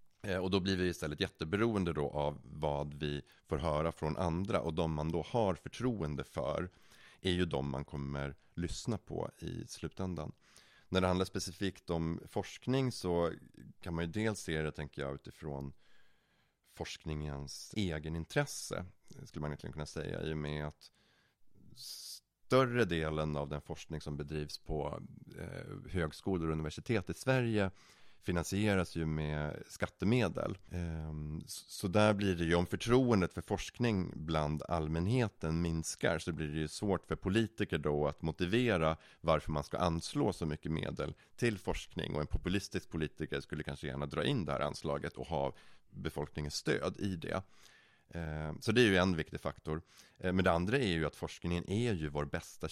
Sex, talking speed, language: male, 160 wpm, Swedish